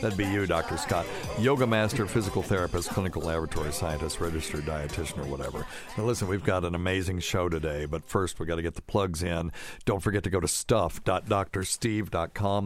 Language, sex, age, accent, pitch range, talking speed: English, male, 60-79, American, 85-110 Hz, 185 wpm